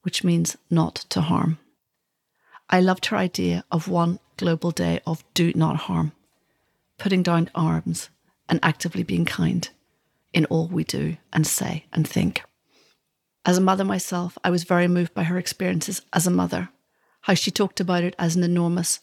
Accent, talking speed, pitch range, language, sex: British, 170 wpm, 165-185 Hz, English, female